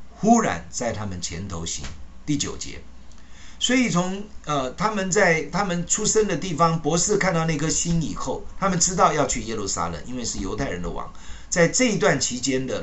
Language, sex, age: Chinese, male, 50-69